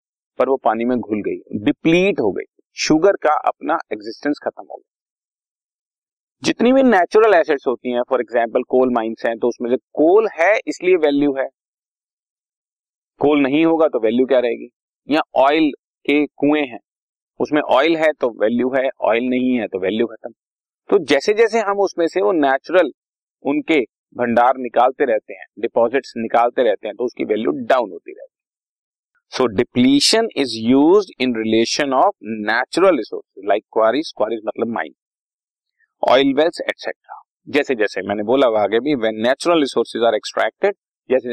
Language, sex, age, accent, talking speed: Hindi, male, 40-59, native, 135 wpm